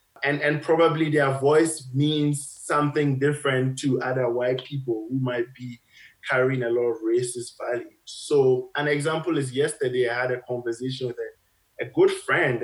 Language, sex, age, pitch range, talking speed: English, male, 20-39, 125-145 Hz, 165 wpm